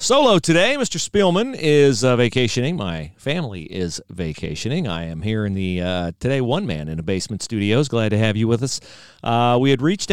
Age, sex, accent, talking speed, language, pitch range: 40-59, male, American, 200 wpm, English, 105-145 Hz